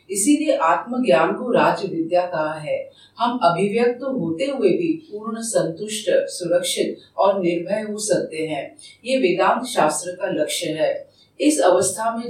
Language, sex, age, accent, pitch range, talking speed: Hindi, female, 50-69, native, 175-260 Hz, 145 wpm